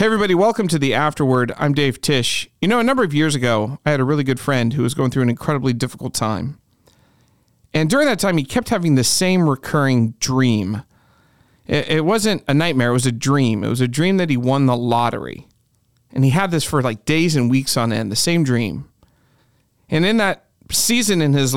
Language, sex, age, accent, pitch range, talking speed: English, male, 40-59, American, 125-160 Hz, 215 wpm